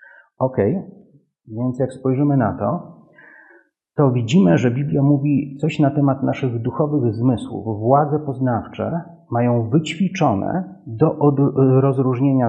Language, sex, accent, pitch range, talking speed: Polish, male, native, 115-150 Hz, 110 wpm